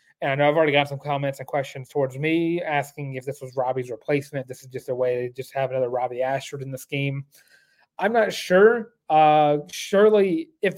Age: 30-49